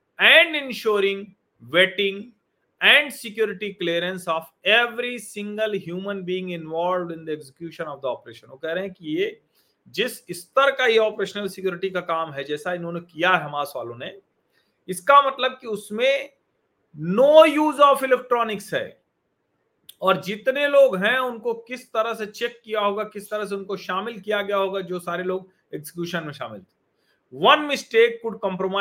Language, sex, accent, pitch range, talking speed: Hindi, male, native, 175-230 Hz, 145 wpm